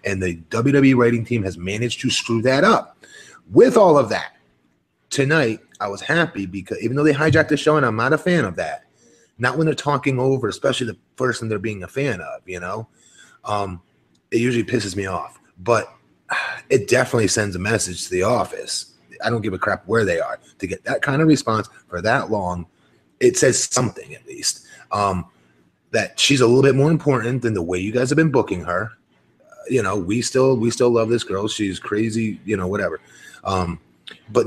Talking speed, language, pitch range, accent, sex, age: 205 wpm, English, 100-140 Hz, American, male, 30-49